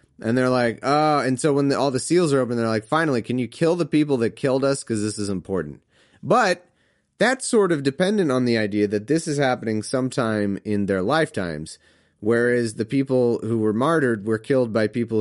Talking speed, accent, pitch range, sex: 215 wpm, American, 110-145 Hz, male